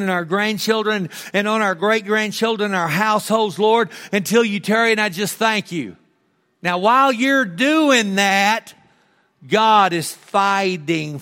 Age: 50-69